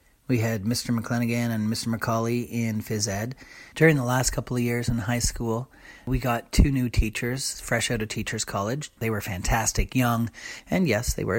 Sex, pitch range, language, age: male, 110-140 Hz, English, 30-49